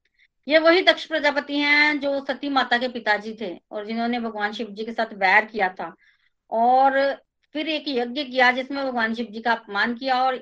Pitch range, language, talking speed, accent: 220-280 Hz, Hindi, 195 wpm, native